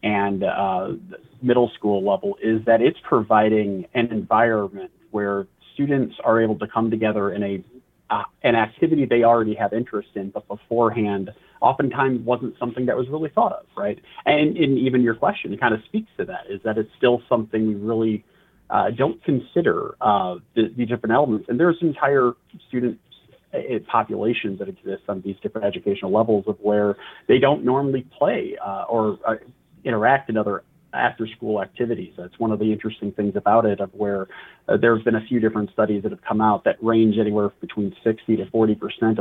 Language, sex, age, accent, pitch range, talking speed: English, male, 30-49, American, 105-125 Hz, 180 wpm